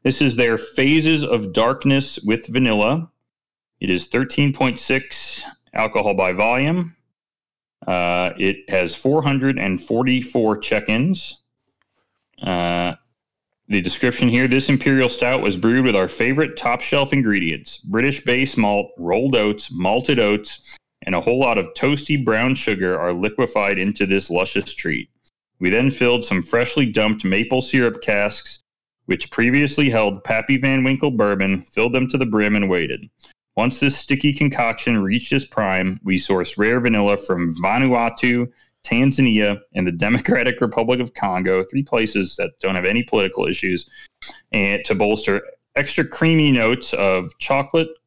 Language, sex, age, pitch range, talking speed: English, male, 30-49, 100-135 Hz, 140 wpm